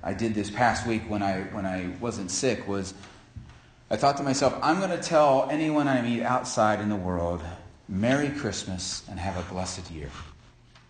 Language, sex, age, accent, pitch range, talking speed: English, male, 30-49, American, 105-130 Hz, 185 wpm